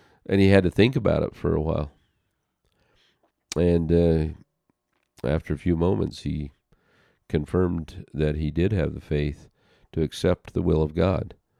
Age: 50-69